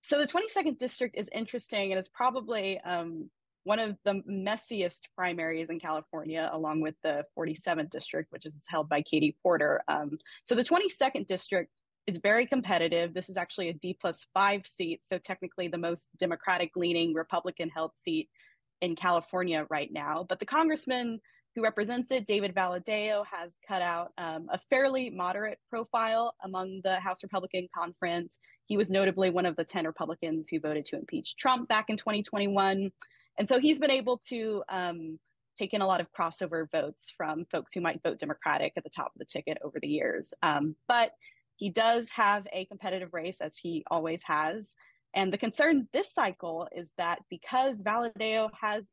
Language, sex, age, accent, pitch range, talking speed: English, female, 20-39, American, 170-225 Hz, 180 wpm